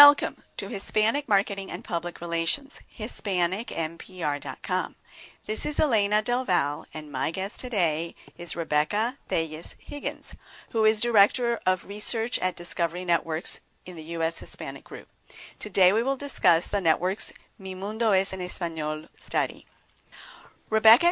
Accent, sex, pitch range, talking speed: American, female, 170-220 Hz, 130 wpm